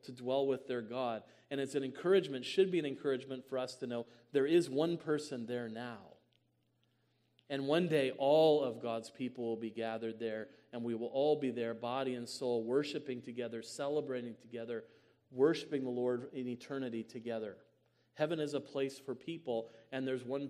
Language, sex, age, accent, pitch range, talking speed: English, male, 40-59, American, 120-140 Hz, 180 wpm